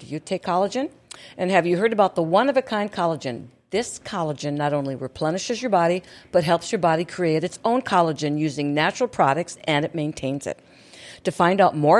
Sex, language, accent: female, English, American